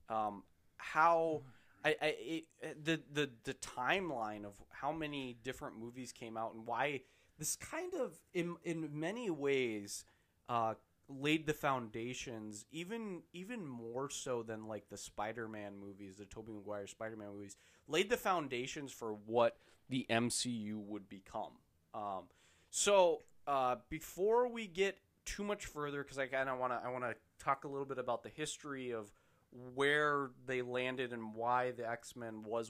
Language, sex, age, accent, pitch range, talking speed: English, male, 20-39, American, 105-140 Hz, 160 wpm